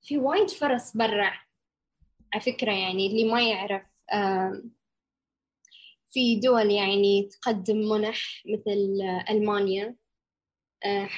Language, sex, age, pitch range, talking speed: Arabic, female, 10-29, 195-225 Hz, 105 wpm